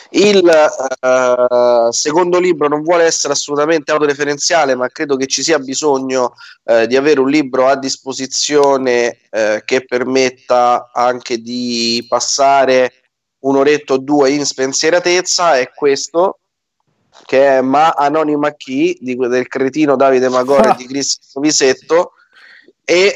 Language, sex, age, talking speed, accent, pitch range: Italian, male, 30-49, 125 wpm, native, 130-155 Hz